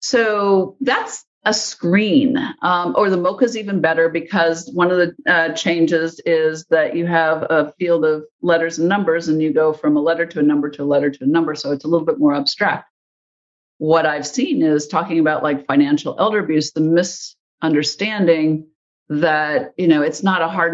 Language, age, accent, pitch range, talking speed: English, 50-69, American, 155-195 Hz, 195 wpm